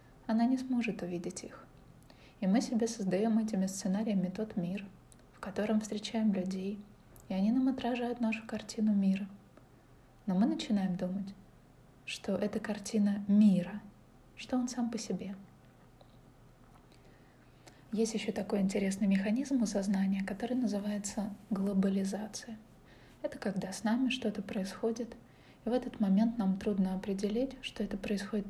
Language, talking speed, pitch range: Russian, 135 wpm, 195-225 Hz